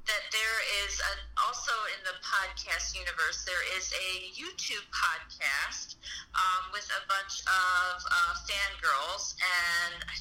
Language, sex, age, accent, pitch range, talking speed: English, female, 30-49, American, 180-225 Hz, 130 wpm